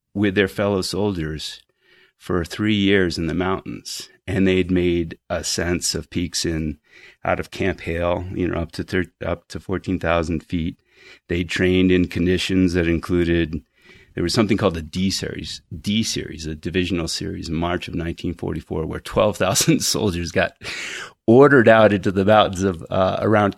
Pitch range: 85-105 Hz